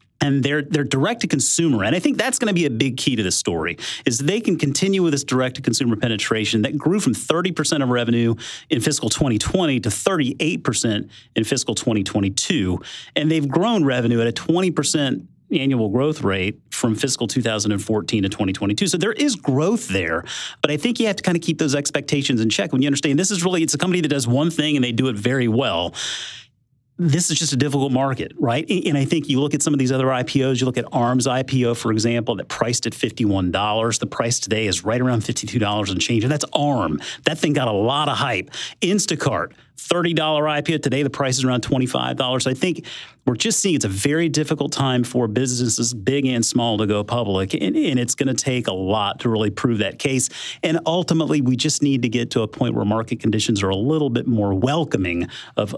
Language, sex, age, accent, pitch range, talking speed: English, male, 30-49, American, 115-150 Hz, 215 wpm